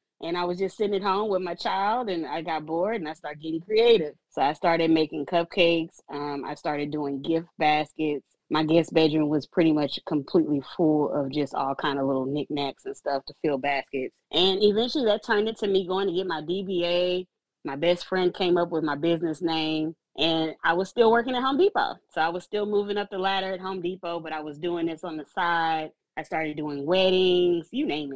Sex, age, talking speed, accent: female, 20-39, 220 wpm, American